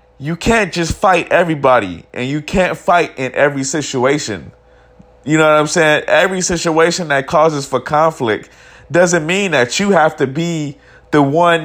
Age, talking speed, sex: 20-39, 165 wpm, male